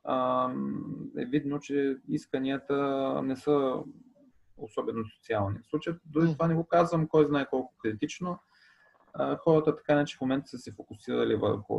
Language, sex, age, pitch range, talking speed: Bulgarian, male, 30-49, 115-145 Hz, 145 wpm